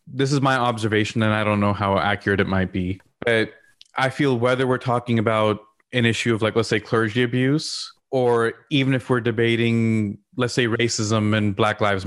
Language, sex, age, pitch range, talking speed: English, male, 20-39, 110-130 Hz, 195 wpm